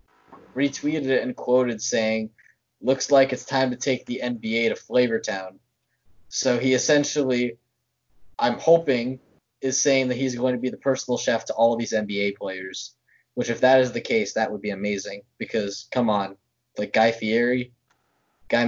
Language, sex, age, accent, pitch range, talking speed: English, male, 20-39, American, 105-130 Hz, 170 wpm